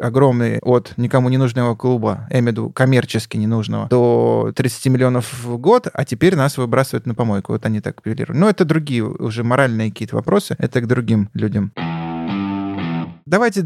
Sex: male